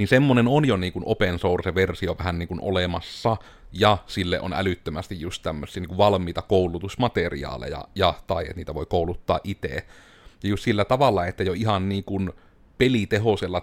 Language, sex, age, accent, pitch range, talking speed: Finnish, male, 30-49, native, 85-100 Hz, 165 wpm